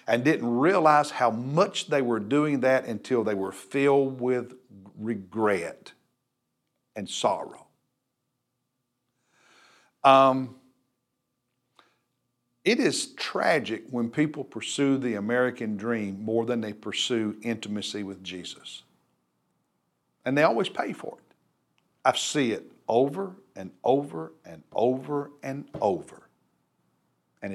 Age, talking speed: 50-69, 110 wpm